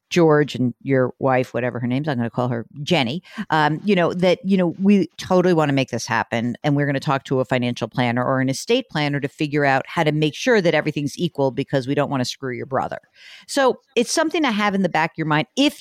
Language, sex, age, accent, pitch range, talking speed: English, female, 50-69, American, 135-185 Hz, 265 wpm